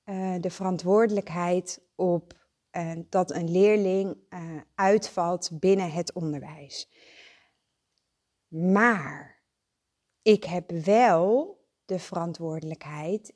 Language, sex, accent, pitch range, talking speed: Dutch, female, Dutch, 175-230 Hz, 85 wpm